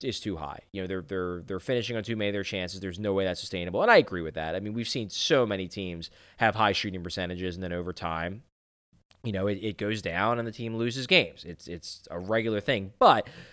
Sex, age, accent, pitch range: male, 20-39, American, 90-115 Hz